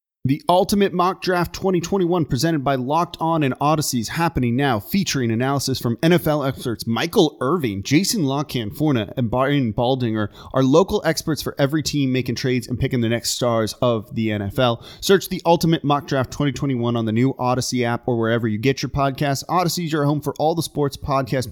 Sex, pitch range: male, 120-155 Hz